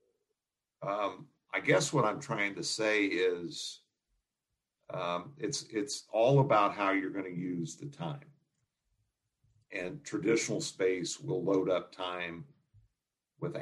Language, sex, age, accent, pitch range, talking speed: English, male, 50-69, American, 90-150 Hz, 130 wpm